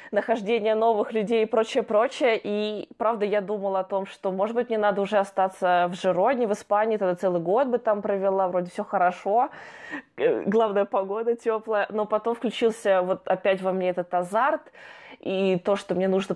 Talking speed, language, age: 180 wpm, Russian, 20-39